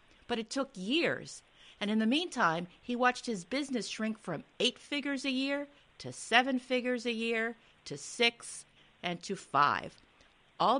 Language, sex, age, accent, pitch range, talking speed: English, female, 50-69, American, 170-245 Hz, 160 wpm